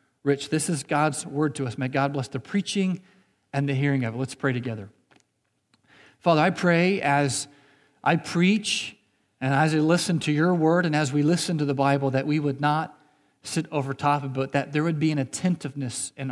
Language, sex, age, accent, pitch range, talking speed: English, male, 40-59, American, 135-160 Hz, 210 wpm